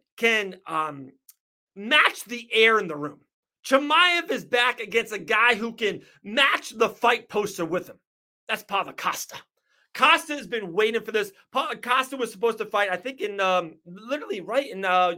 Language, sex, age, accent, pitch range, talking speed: English, male, 30-49, American, 190-250 Hz, 180 wpm